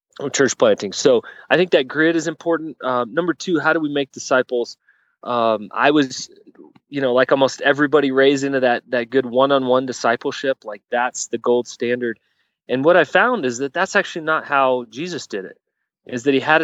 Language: English